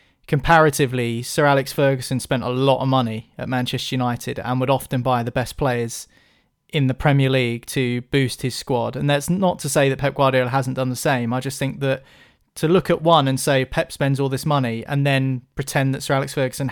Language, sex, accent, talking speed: English, male, British, 220 wpm